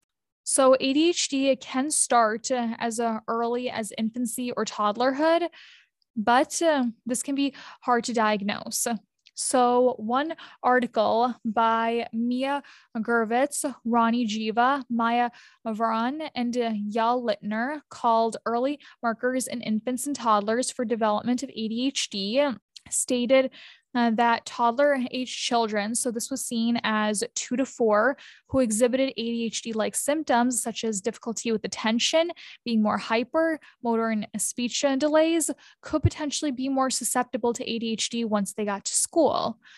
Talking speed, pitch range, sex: 130 wpm, 225-265 Hz, female